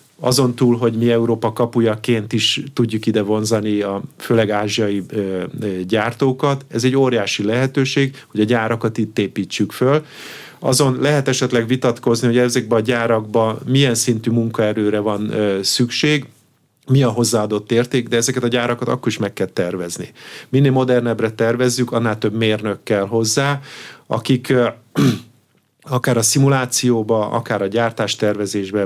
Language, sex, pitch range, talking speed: Hungarian, male, 110-130 Hz, 145 wpm